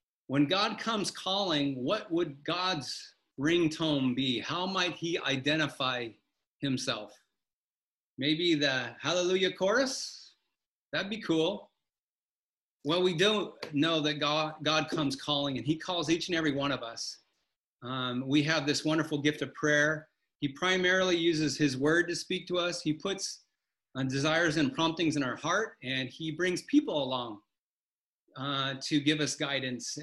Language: English